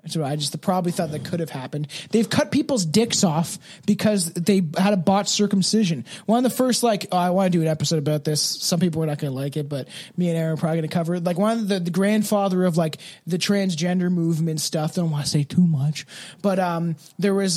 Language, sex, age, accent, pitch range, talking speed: English, male, 20-39, American, 165-190 Hz, 255 wpm